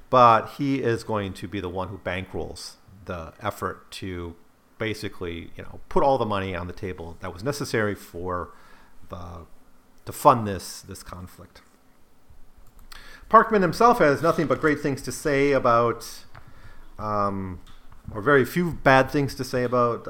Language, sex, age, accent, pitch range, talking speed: English, male, 40-59, American, 100-135 Hz, 155 wpm